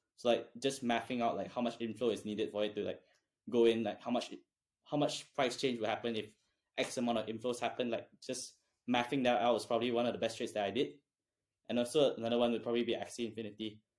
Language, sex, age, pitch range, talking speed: English, male, 10-29, 115-130 Hz, 240 wpm